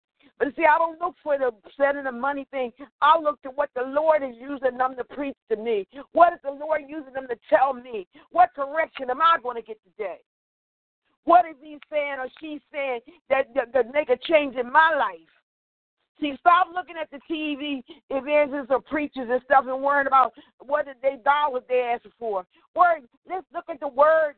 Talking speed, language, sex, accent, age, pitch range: 210 wpm, English, female, American, 50-69, 260-325 Hz